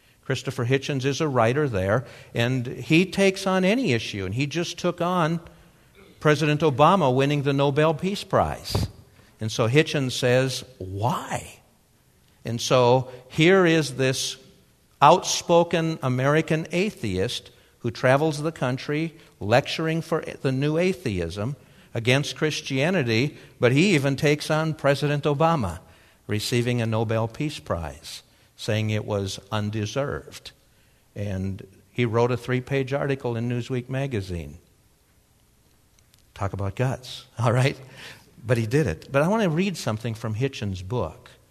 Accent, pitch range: American, 110-150 Hz